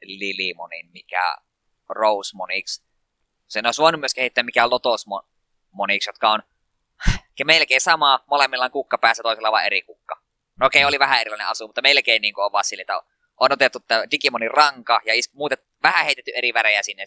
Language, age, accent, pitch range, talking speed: Finnish, 20-39, native, 105-125 Hz, 170 wpm